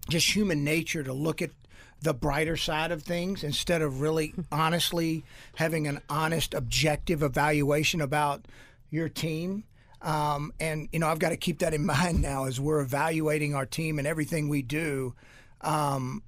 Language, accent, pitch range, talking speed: English, American, 135-160 Hz, 165 wpm